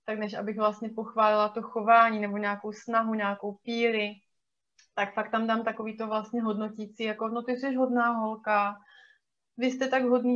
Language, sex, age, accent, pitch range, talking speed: Czech, female, 20-39, native, 210-235 Hz, 175 wpm